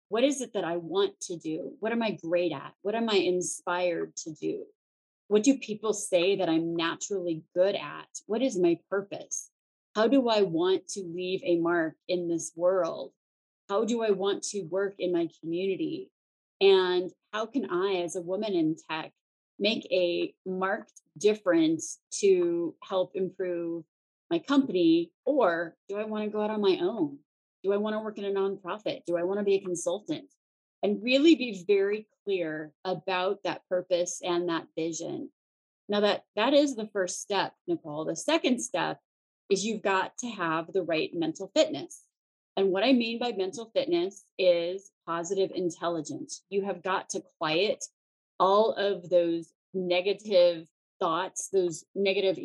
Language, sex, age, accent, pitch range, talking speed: English, female, 30-49, American, 175-220 Hz, 170 wpm